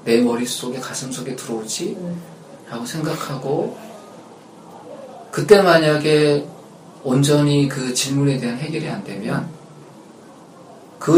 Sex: male